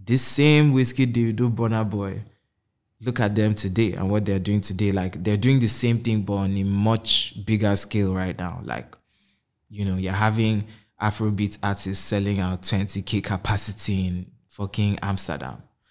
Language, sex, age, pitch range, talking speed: English, male, 20-39, 100-115 Hz, 165 wpm